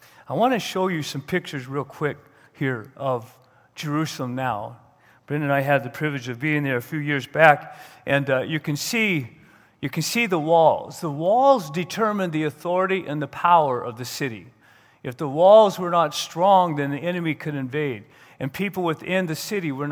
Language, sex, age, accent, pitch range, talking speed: English, male, 40-59, American, 145-180 Hz, 195 wpm